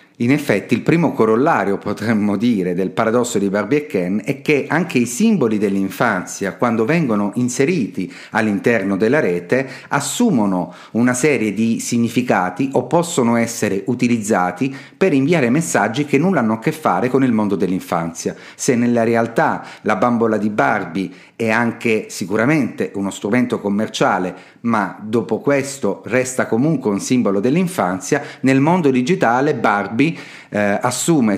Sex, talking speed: male, 140 wpm